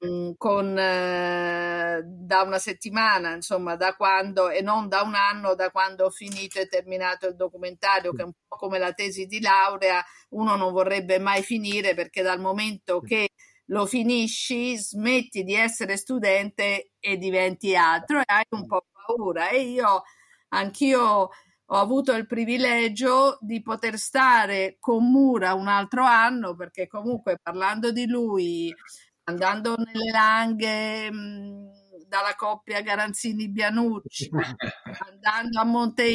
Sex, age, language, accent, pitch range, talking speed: female, 50-69, Italian, native, 190-230 Hz, 135 wpm